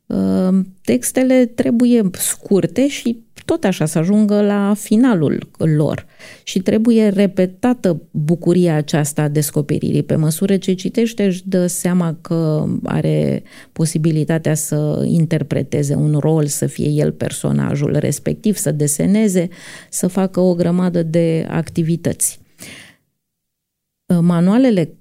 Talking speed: 110 wpm